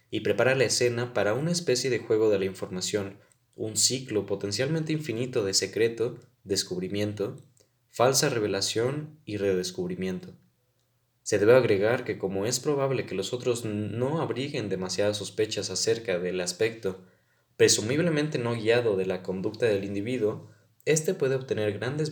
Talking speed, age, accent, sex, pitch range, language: 140 wpm, 20-39, Mexican, male, 100-135 Hz, Spanish